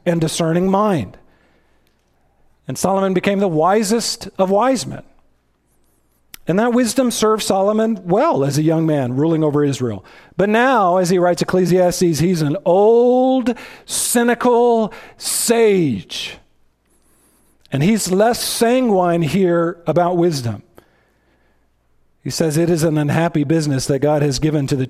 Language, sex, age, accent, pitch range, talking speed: English, male, 40-59, American, 150-235 Hz, 135 wpm